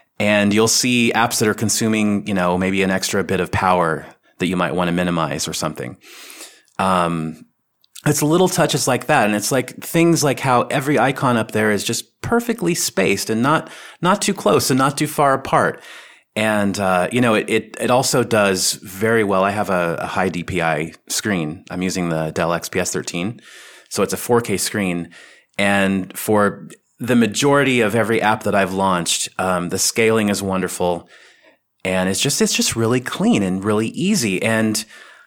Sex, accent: male, American